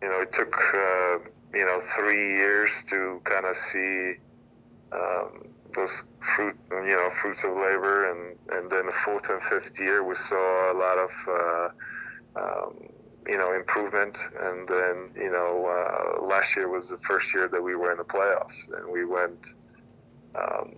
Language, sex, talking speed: English, male, 170 wpm